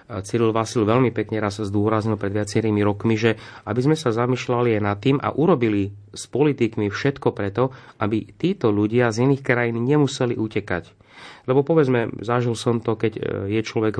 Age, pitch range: 30-49, 105-125 Hz